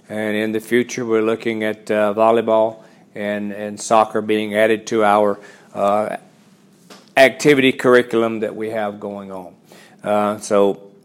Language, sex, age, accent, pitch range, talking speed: English, male, 40-59, American, 110-120 Hz, 140 wpm